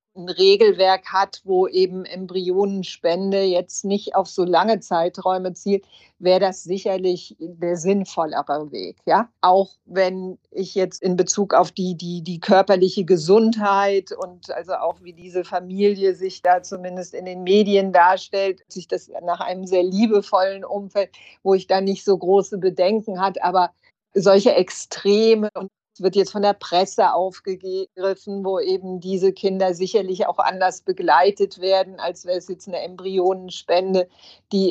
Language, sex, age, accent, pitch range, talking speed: German, female, 50-69, German, 180-195 Hz, 150 wpm